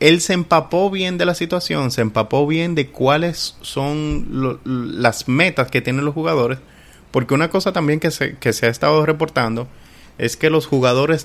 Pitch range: 110-145 Hz